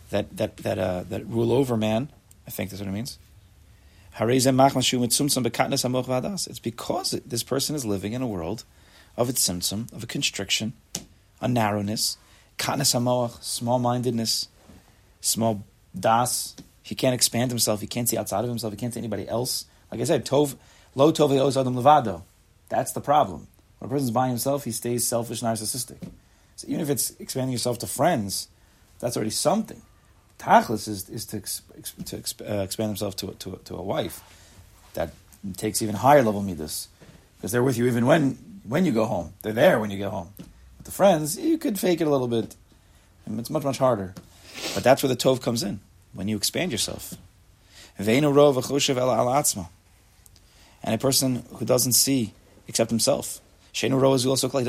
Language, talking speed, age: English, 170 wpm, 30-49